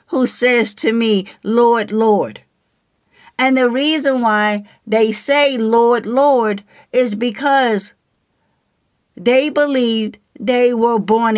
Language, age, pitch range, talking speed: English, 50-69, 210-245 Hz, 110 wpm